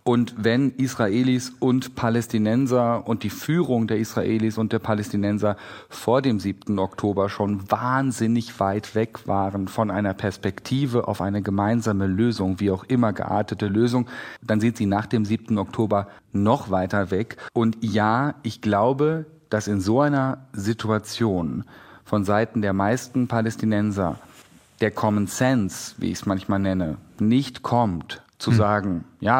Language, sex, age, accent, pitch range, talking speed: German, male, 40-59, German, 100-125 Hz, 145 wpm